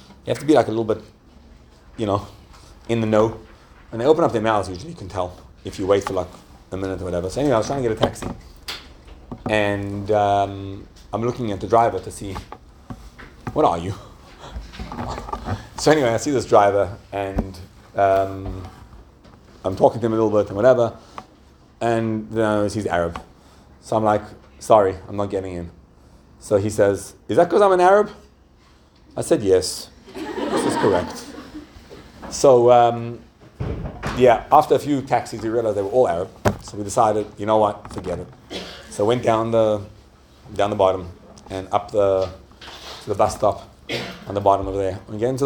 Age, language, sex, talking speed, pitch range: 30-49, English, male, 180 wpm, 95-115 Hz